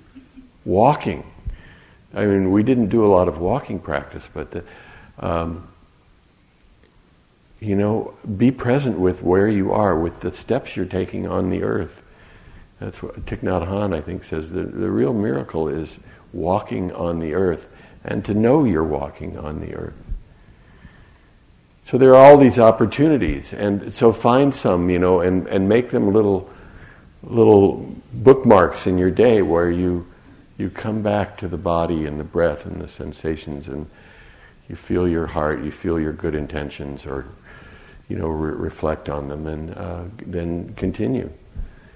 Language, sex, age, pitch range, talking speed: English, male, 60-79, 80-105 Hz, 160 wpm